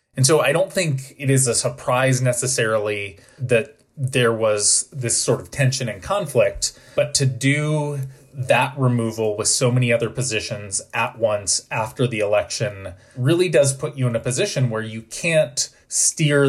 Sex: male